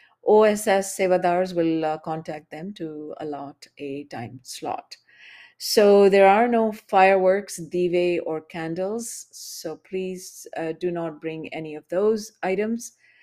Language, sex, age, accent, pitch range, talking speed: English, female, 50-69, Indian, 160-190 Hz, 130 wpm